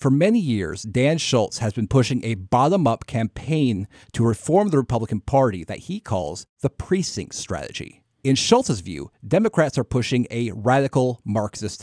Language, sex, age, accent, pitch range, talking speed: English, male, 30-49, American, 105-140 Hz, 155 wpm